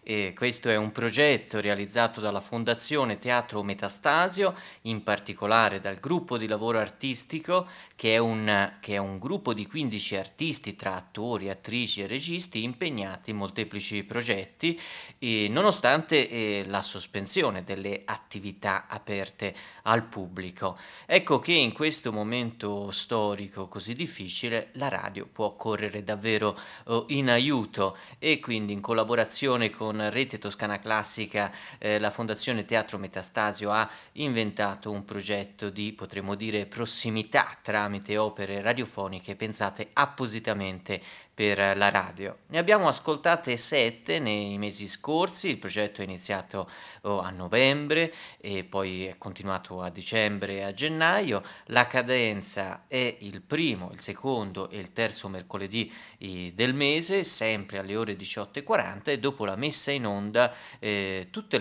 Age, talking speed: 30-49, 135 wpm